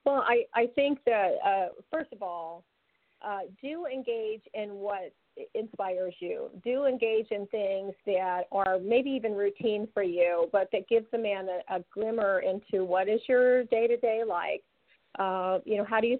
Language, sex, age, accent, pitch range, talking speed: English, female, 40-59, American, 190-245 Hz, 175 wpm